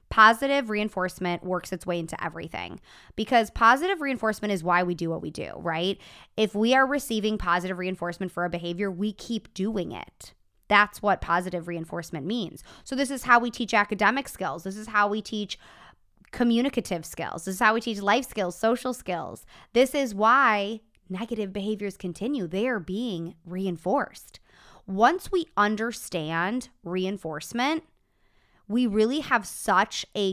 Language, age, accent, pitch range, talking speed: English, 20-39, American, 180-240 Hz, 155 wpm